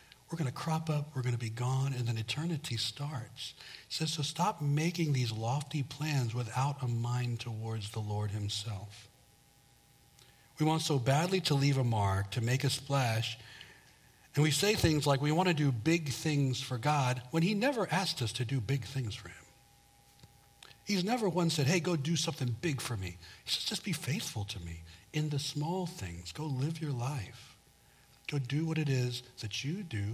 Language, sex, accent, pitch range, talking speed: English, male, American, 115-155 Hz, 195 wpm